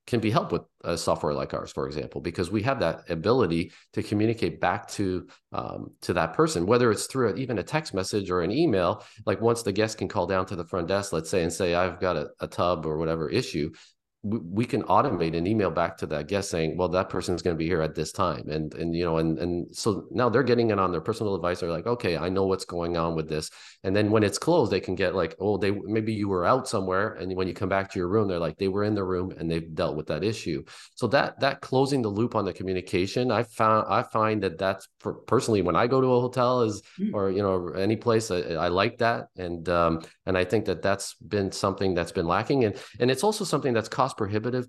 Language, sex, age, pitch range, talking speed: English, male, 40-59, 90-115 Hz, 260 wpm